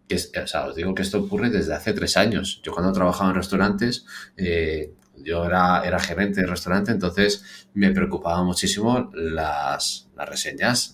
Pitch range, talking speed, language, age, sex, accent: 85-100 Hz, 165 wpm, Spanish, 30-49, male, Spanish